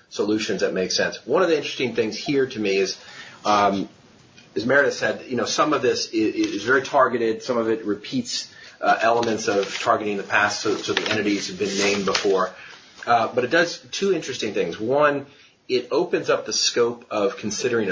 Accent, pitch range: American, 105-170 Hz